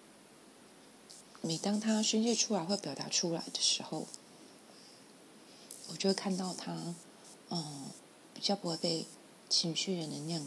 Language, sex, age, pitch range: Chinese, female, 30-49, 165-200 Hz